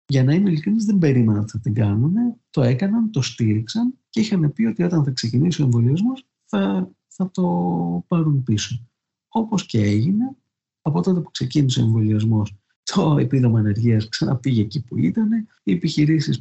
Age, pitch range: 50-69, 110-145 Hz